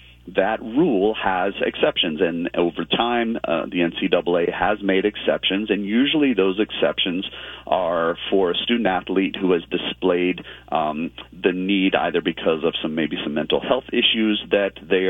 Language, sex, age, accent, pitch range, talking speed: English, male, 40-59, American, 85-105 Hz, 155 wpm